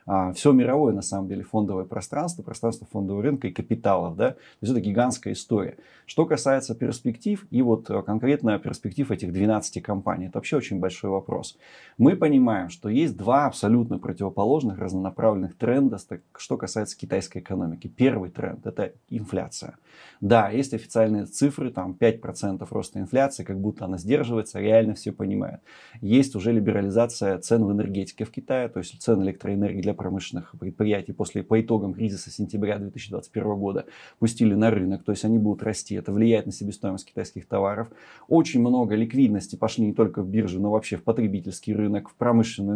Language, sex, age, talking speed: Russian, male, 20-39, 165 wpm